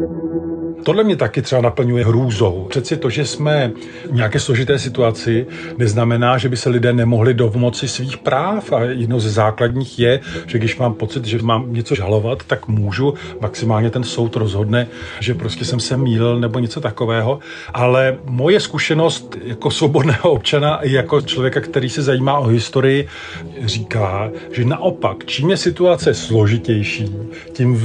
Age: 40-59